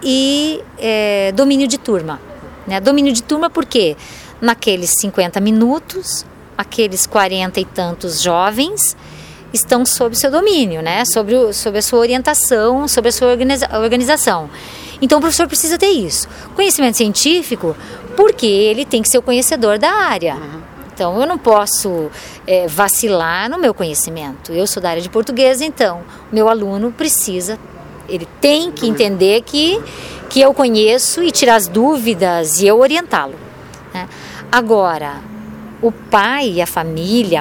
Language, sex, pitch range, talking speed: Portuguese, female, 195-270 Hz, 145 wpm